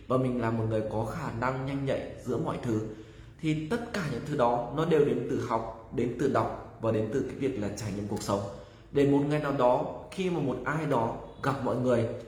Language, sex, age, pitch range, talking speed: Vietnamese, male, 20-39, 115-150 Hz, 245 wpm